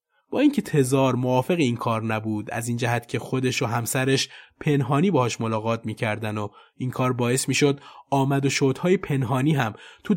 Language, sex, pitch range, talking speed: Persian, male, 120-165 Hz, 170 wpm